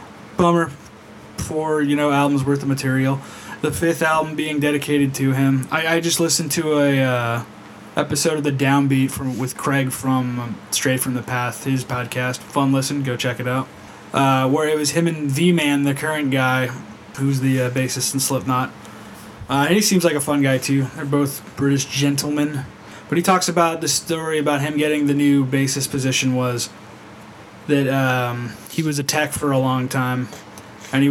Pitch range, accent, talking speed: 130-145 Hz, American, 190 wpm